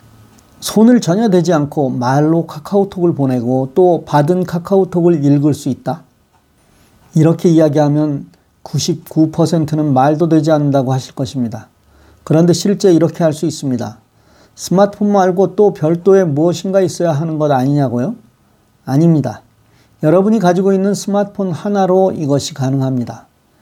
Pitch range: 130-175 Hz